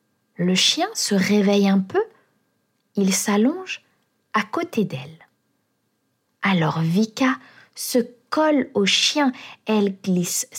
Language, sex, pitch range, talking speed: French, female, 175-245 Hz, 110 wpm